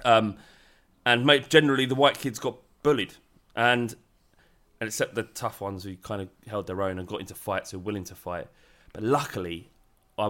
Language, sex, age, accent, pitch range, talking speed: English, male, 20-39, British, 95-125 Hz, 185 wpm